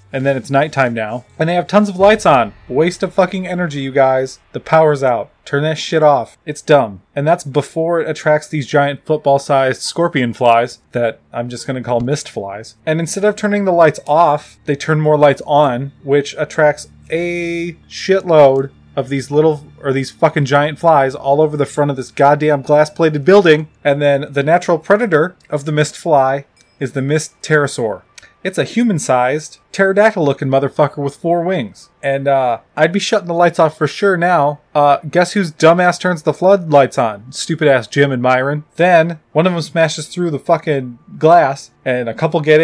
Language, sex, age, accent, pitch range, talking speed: English, male, 30-49, American, 135-165 Hz, 190 wpm